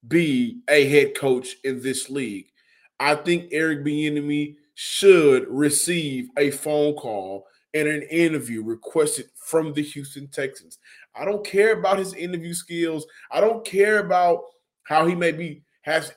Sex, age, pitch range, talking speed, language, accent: male, 20-39, 145-195 Hz, 145 wpm, English, American